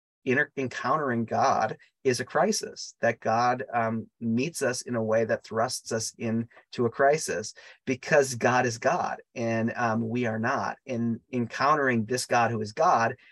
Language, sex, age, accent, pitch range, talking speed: English, male, 30-49, American, 115-140 Hz, 160 wpm